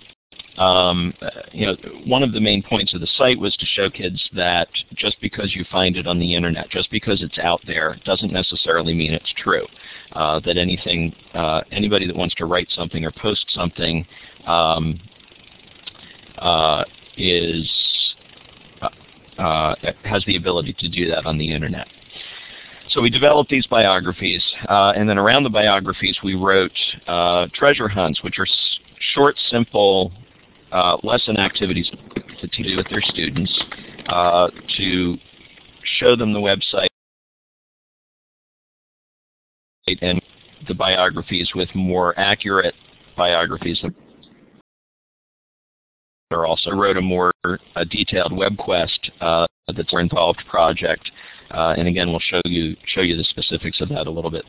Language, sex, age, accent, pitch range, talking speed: English, male, 50-69, American, 85-100 Hz, 145 wpm